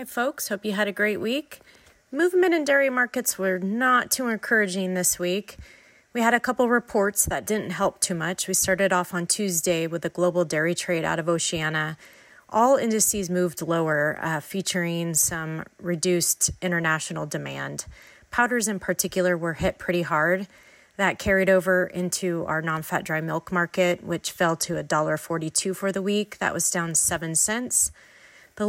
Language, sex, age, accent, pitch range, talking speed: English, female, 30-49, American, 170-205 Hz, 170 wpm